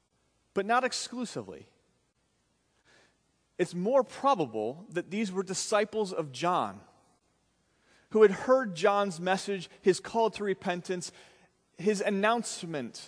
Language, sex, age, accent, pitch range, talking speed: English, male, 30-49, American, 170-220 Hz, 105 wpm